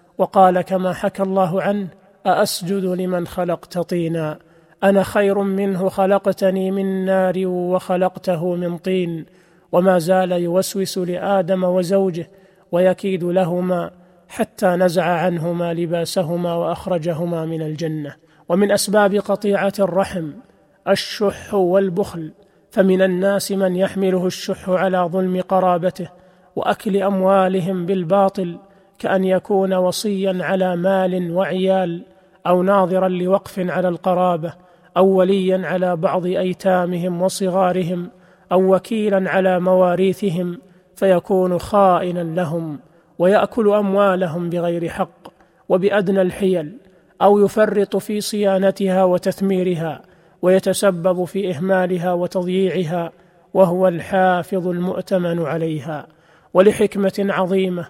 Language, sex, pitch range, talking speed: Arabic, male, 180-195 Hz, 95 wpm